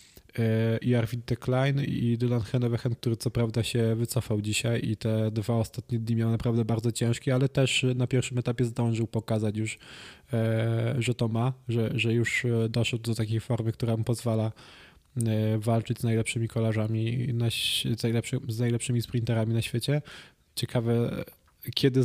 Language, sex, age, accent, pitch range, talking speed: Polish, male, 20-39, native, 115-125 Hz, 140 wpm